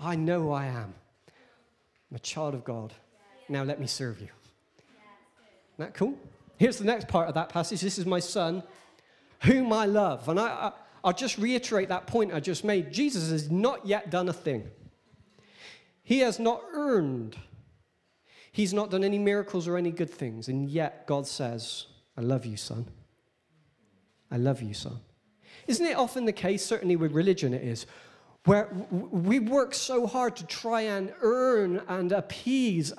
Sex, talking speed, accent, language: male, 170 wpm, British, English